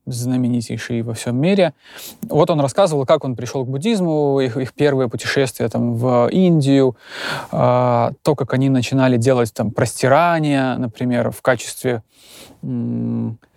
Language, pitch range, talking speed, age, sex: Russian, 120-140 Hz, 135 wpm, 20-39, male